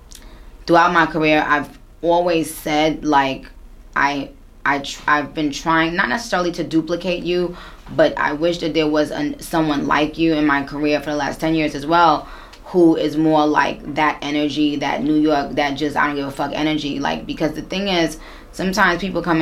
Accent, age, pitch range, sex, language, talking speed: American, 20-39, 150-170 Hz, female, English, 195 wpm